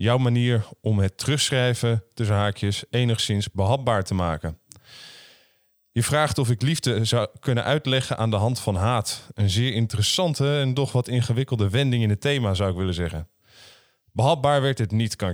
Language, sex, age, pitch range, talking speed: Dutch, male, 20-39, 105-145 Hz, 170 wpm